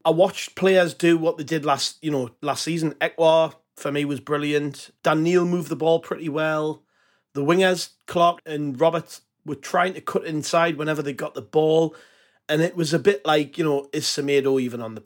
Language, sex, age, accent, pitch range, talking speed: English, male, 30-49, British, 140-175 Hz, 205 wpm